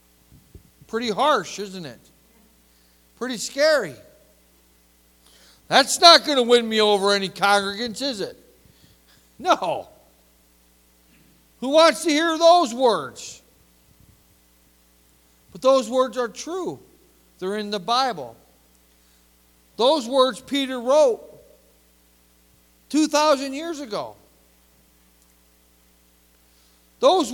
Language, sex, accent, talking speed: English, male, American, 90 wpm